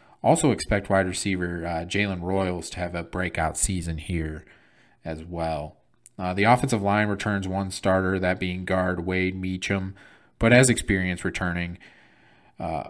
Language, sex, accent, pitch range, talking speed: English, male, American, 90-100 Hz, 150 wpm